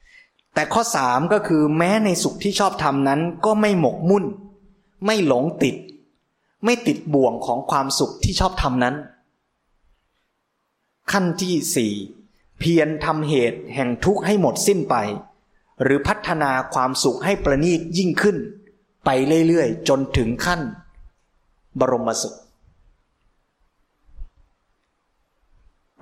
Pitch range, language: 125-165 Hz, Thai